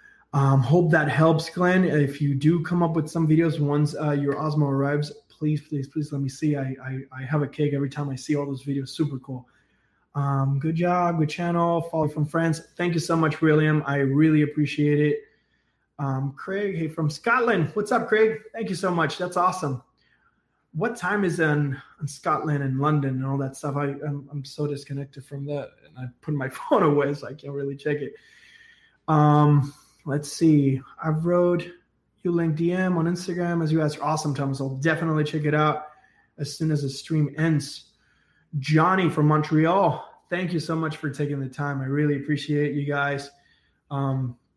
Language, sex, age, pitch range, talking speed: English, male, 20-39, 140-165 Hz, 195 wpm